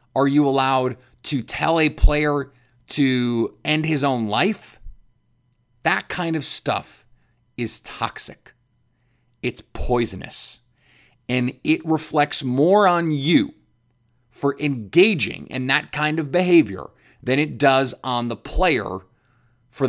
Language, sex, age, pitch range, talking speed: English, male, 30-49, 120-155 Hz, 120 wpm